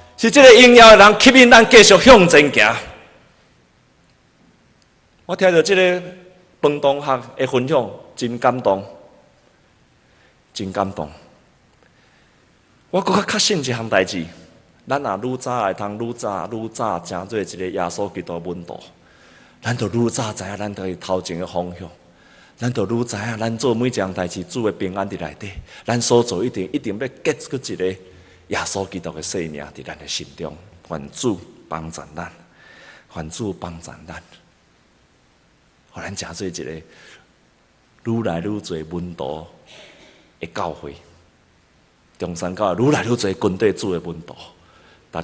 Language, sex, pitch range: Chinese, male, 85-120 Hz